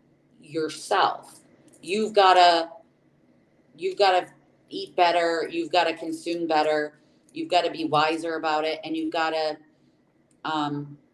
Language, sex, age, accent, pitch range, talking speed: English, female, 30-49, American, 155-200 Hz, 140 wpm